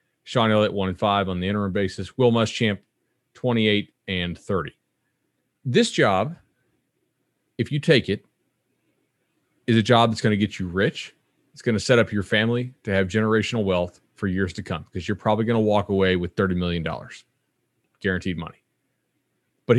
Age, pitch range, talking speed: 30-49, 95-125 Hz, 175 wpm